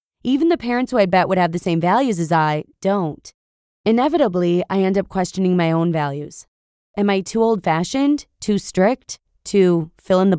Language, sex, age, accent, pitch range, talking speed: English, female, 20-39, American, 170-220 Hz, 185 wpm